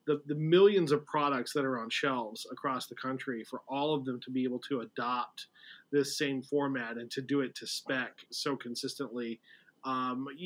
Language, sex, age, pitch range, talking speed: English, male, 30-49, 130-150 Hz, 190 wpm